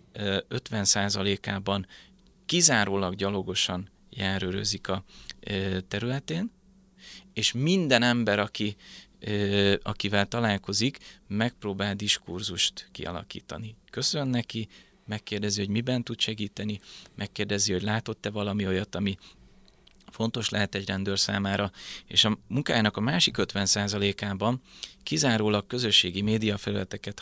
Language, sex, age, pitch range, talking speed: Hungarian, male, 30-49, 100-120 Hz, 95 wpm